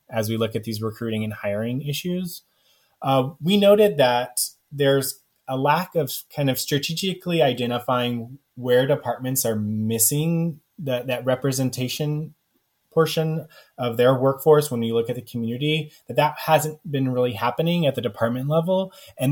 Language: English